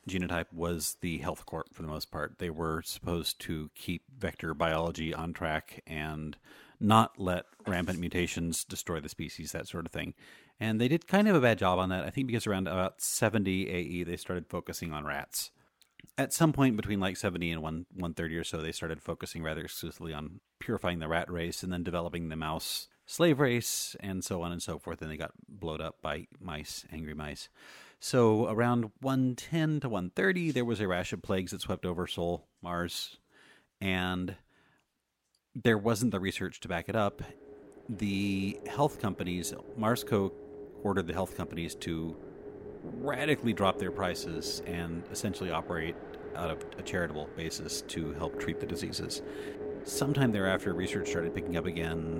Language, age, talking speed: English, 30-49, 175 wpm